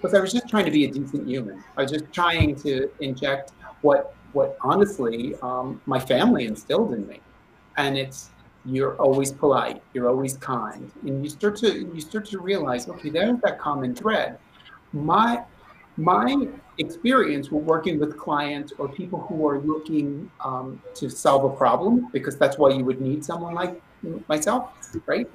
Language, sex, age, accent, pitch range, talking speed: English, male, 40-59, American, 130-165 Hz, 175 wpm